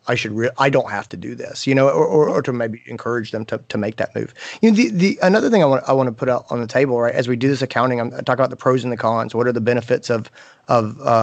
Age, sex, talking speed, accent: 30-49, male, 315 wpm, American